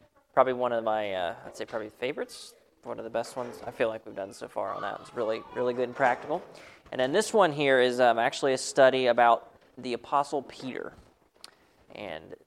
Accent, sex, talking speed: American, male, 210 wpm